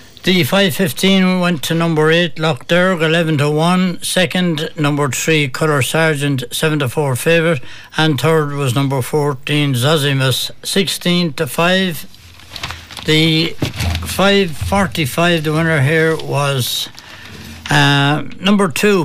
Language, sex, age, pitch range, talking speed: English, male, 60-79, 140-170 Hz, 125 wpm